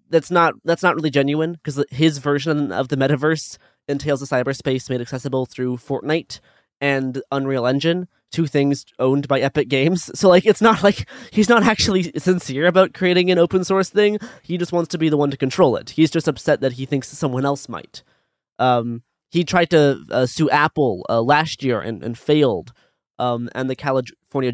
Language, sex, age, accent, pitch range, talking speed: English, male, 20-39, American, 130-160 Hz, 195 wpm